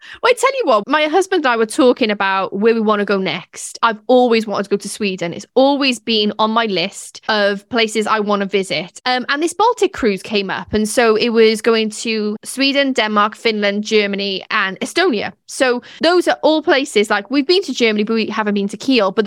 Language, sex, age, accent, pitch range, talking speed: English, female, 10-29, British, 210-285 Hz, 225 wpm